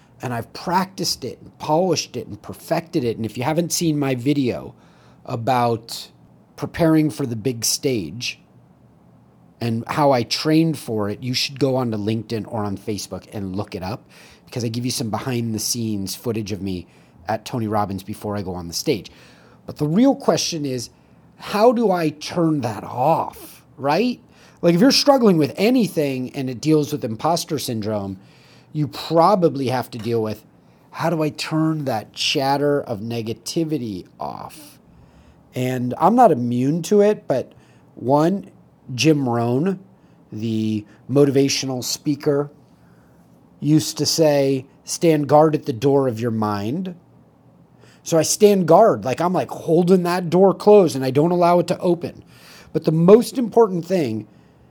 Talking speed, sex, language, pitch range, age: 160 wpm, male, English, 110-160 Hz, 30-49